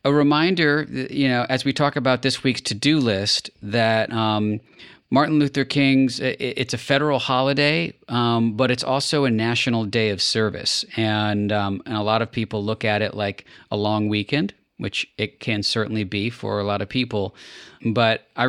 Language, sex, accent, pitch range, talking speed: English, male, American, 105-130 Hz, 180 wpm